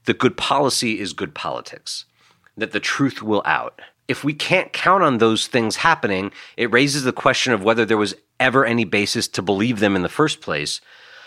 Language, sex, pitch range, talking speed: English, male, 100-130 Hz, 195 wpm